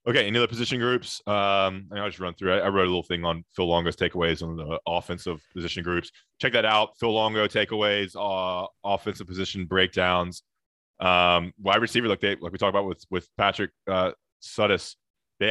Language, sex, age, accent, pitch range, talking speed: English, male, 20-39, American, 85-100 Hz, 200 wpm